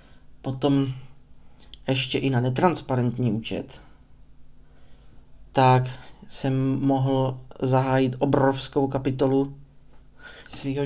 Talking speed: 70 wpm